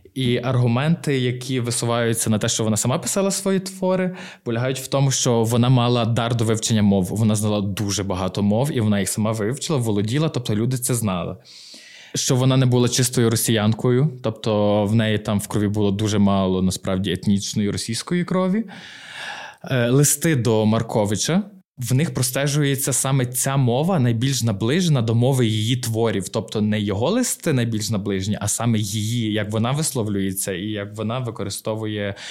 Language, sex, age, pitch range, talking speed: Ukrainian, male, 20-39, 110-135 Hz, 160 wpm